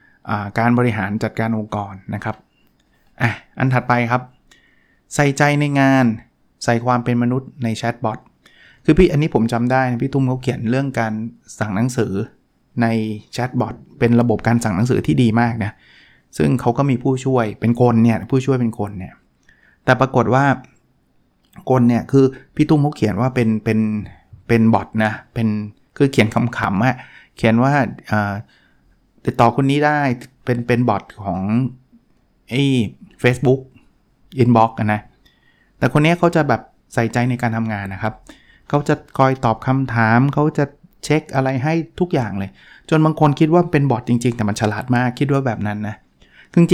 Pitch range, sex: 110-135 Hz, male